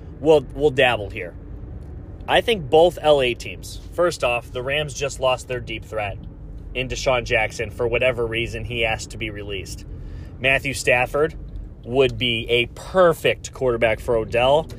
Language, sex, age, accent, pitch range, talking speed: English, male, 30-49, American, 105-135 Hz, 155 wpm